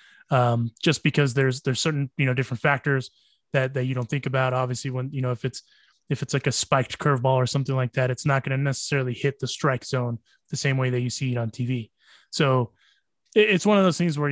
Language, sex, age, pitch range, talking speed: English, male, 20-39, 125-145 Hz, 240 wpm